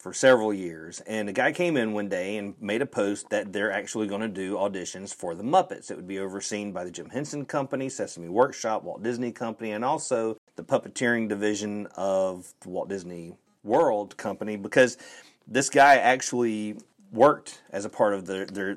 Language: English